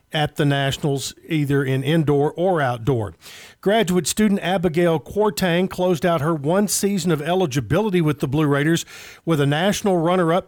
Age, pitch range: 50-69, 145-175 Hz